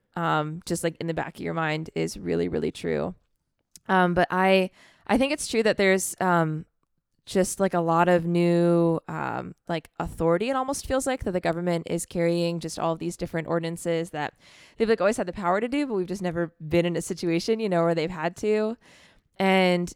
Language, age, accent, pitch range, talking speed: English, 20-39, American, 165-190 Hz, 210 wpm